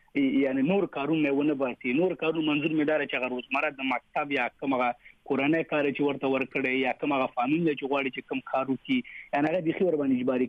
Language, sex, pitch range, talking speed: Urdu, male, 130-155 Hz, 200 wpm